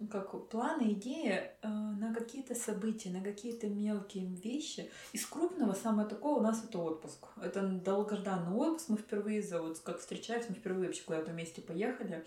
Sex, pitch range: female, 195-255 Hz